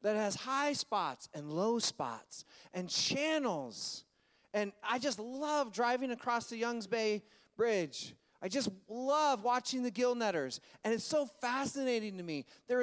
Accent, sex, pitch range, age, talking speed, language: American, male, 185-255 Hz, 30-49, 155 wpm, English